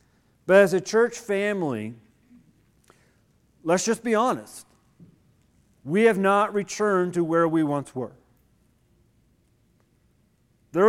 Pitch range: 145-185 Hz